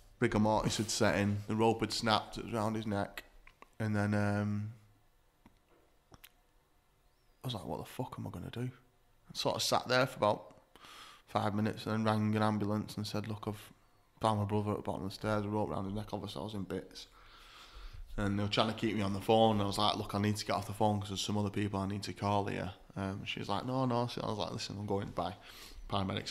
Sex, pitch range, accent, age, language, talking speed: male, 100-110 Hz, British, 20-39, English, 260 wpm